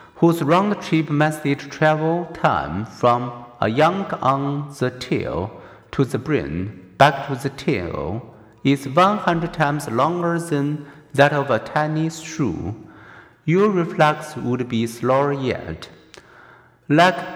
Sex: male